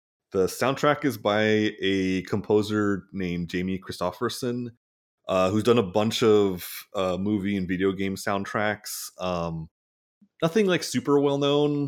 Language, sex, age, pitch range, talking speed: English, male, 30-49, 90-110 Hz, 125 wpm